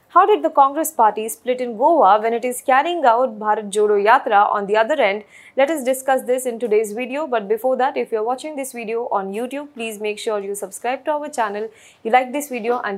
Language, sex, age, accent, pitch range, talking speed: English, female, 20-39, Indian, 215-275 Hz, 235 wpm